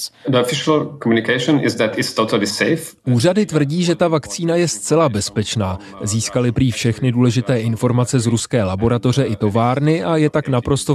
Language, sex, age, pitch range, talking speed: Czech, male, 30-49, 115-140 Hz, 120 wpm